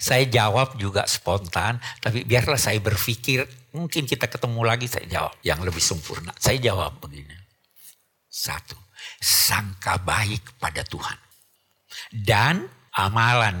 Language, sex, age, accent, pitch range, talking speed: Indonesian, male, 60-79, native, 95-130 Hz, 120 wpm